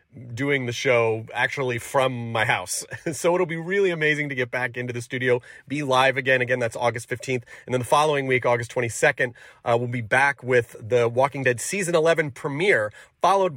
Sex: male